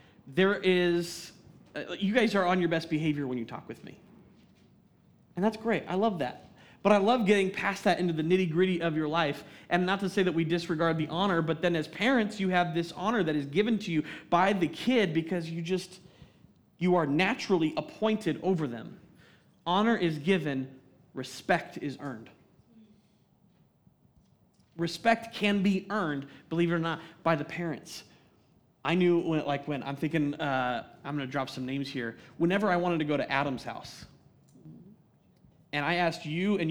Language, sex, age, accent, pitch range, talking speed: English, male, 40-59, American, 135-180 Hz, 185 wpm